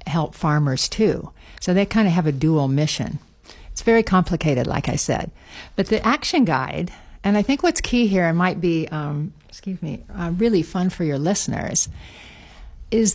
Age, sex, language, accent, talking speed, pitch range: 60-79, female, English, American, 185 wpm, 155-205 Hz